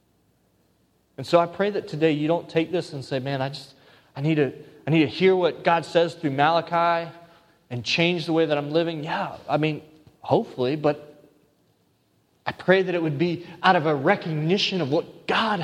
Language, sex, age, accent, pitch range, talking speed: English, male, 30-49, American, 150-205 Hz, 200 wpm